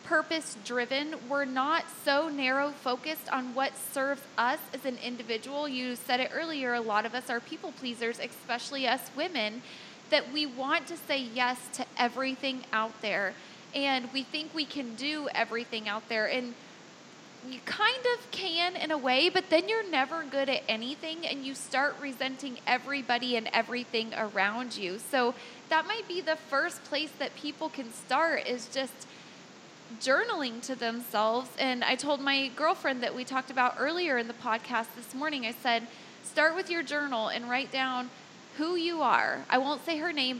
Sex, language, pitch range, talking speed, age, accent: female, English, 245-310 Hz, 175 wpm, 20-39, American